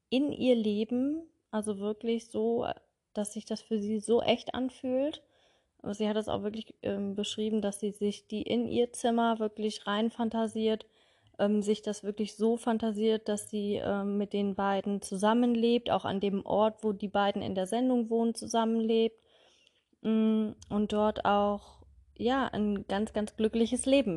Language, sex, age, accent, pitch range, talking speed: German, female, 20-39, German, 195-225 Hz, 165 wpm